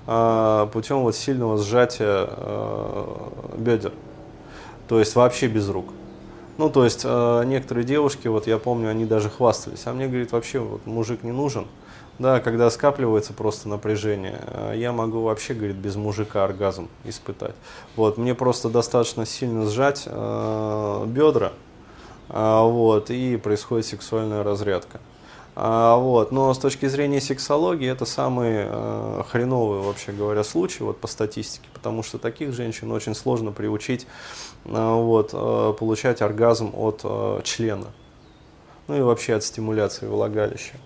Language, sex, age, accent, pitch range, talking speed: Russian, male, 20-39, native, 105-125 Hz, 135 wpm